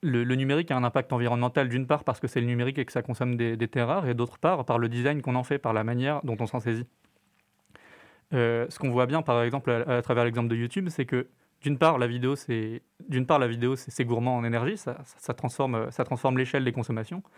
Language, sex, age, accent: French, male, 20-39, French